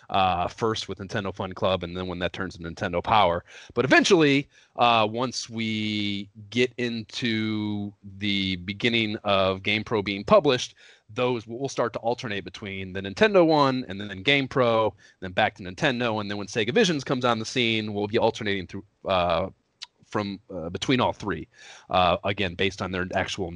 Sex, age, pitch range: male, 30-49, 95-125 Hz